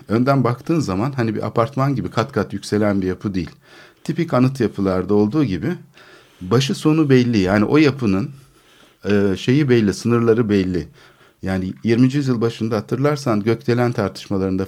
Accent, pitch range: native, 95-125 Hz